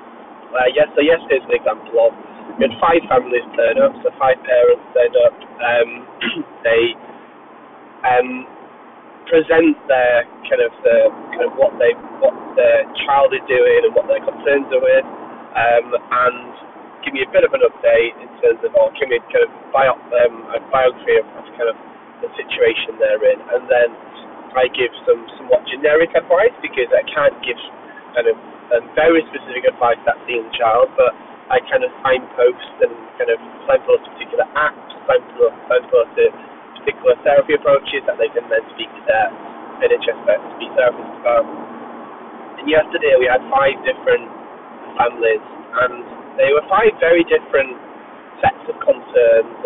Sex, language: male, English